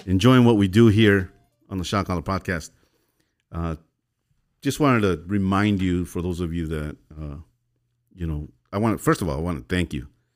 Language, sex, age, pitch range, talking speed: English, male, 50-69, 85-115 Hz, 205 wpm